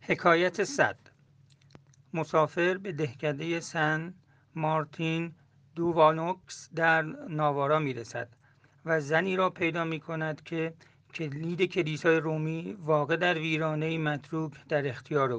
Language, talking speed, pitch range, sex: Persian, 110 wpm, 140-165 Hz, male